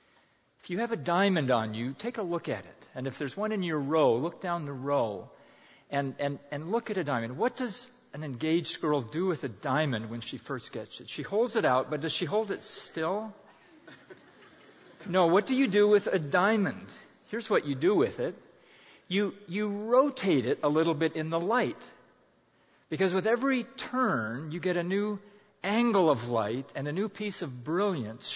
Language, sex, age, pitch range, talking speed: English, male, 50-69, 140-205 Hz, 200 wpm